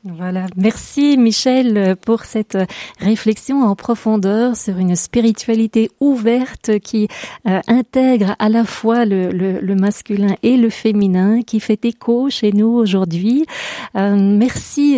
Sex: female